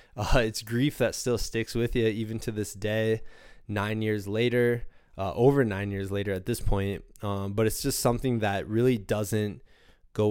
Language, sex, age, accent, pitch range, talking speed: English, male, 20-39, American, 100-125 Hz, 185 wpm